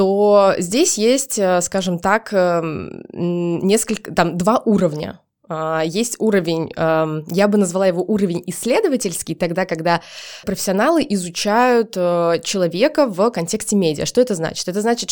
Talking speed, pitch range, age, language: 120 wpm, 170-220 Hz, 20-39, Russian